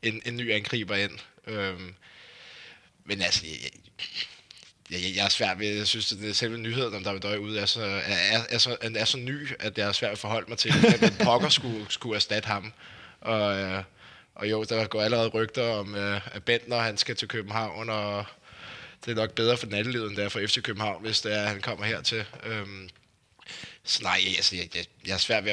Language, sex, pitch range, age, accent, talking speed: Danish, male, 95-110 Hz, 20-39, native, 210 wpm